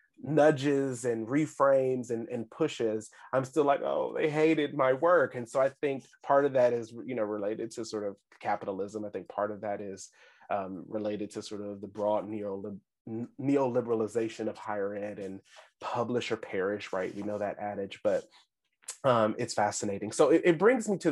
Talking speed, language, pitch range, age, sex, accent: 190 wpm, English, 105-140 Hz, 30-49, male, American